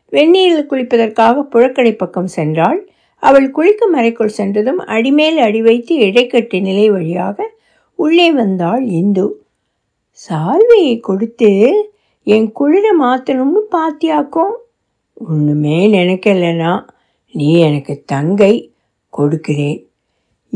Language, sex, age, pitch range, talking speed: Tamil, female, 60-79, 215-310 Hz, 85 wpm